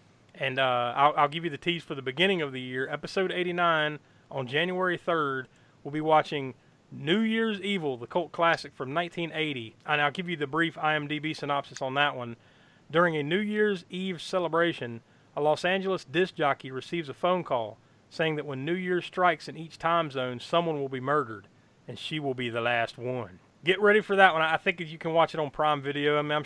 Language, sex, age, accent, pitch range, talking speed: English, male, 30-49, American, 130-170 Hz, 210 wpm